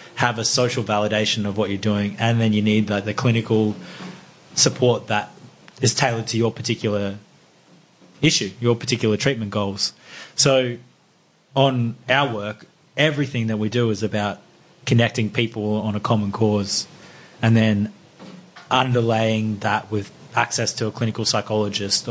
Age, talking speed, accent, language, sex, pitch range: 20-39, 145 wpm, Australian, English, male, 105-125 Hz